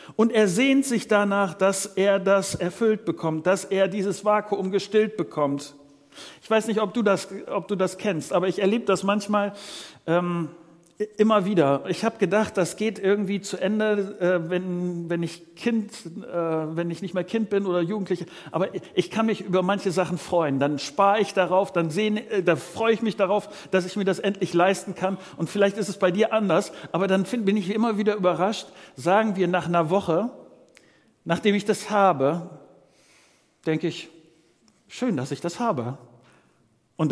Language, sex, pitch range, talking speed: German, male, 170-210 Hz, 180 wpm